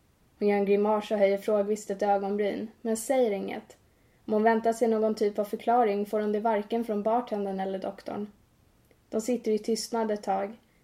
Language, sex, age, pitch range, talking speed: Swedish, female, 20-39, 205-230 Hz, 190 wpm